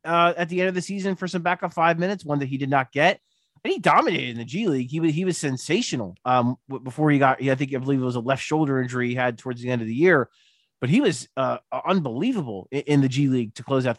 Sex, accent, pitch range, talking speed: male, American, 140-185 Hz, 285 wpm